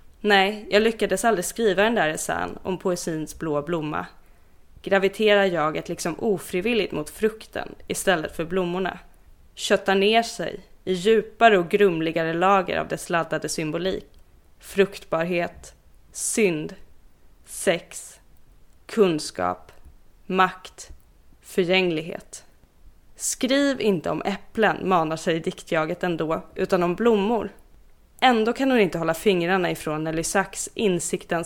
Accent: native